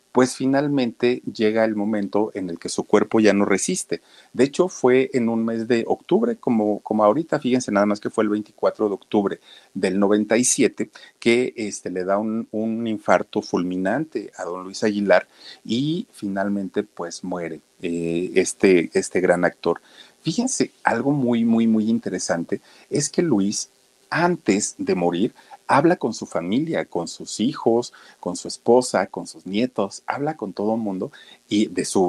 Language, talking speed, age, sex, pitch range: Spanish, 165 wpm, 50-69, male, 100-135 Hz